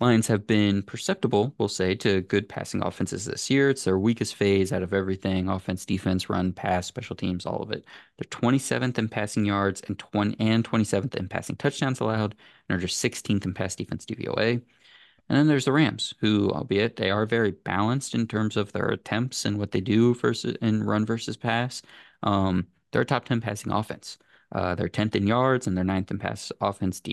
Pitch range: 95-120 Hz